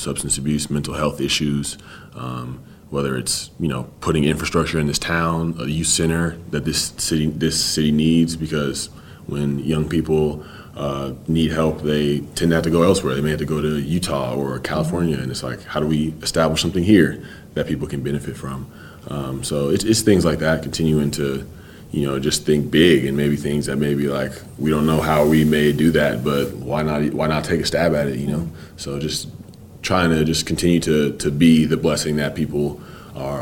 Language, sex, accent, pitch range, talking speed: English, male, American, 70-80 Hz, 205 wpm